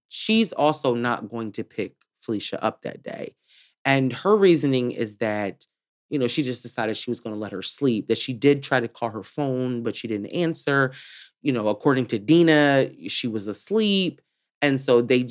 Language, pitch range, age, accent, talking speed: English, 115-155 Hz, 20-39, American, 195 wpm